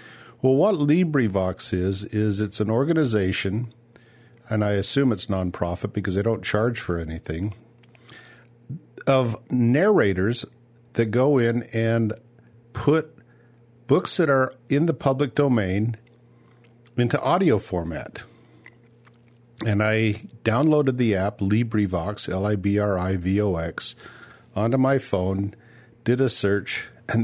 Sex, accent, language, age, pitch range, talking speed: male, American, English, 50-69, 100-125 Hz, 125 wpm